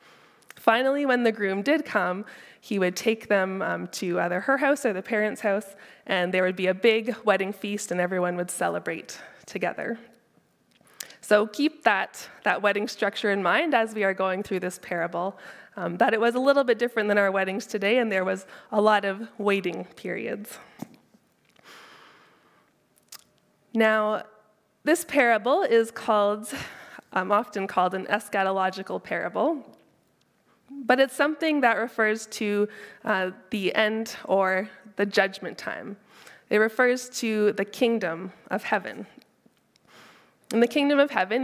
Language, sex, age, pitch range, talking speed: English, female, 20-39, 195-230 Hz, 150 wpm